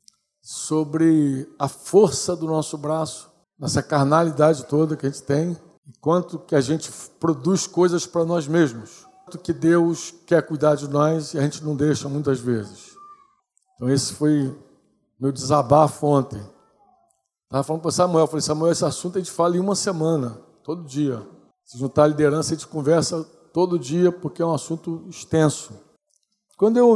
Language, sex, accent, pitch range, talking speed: Portuguese, male, Brazilian, 150-185 Hz, 170 wpm